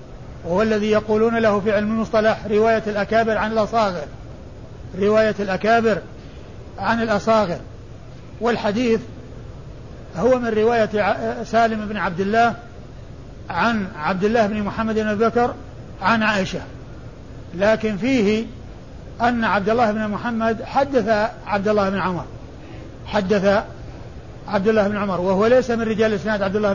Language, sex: Arabic, male